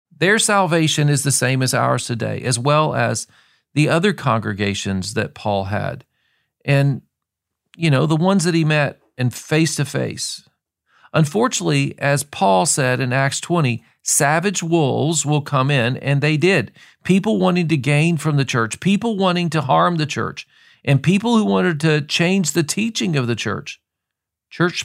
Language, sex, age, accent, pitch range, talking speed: English, male, 40-59, American, 115-155 Hz, 160 wpm